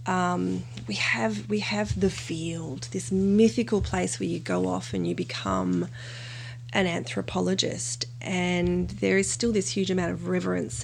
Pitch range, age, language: 120-185 Hz, 30-49, English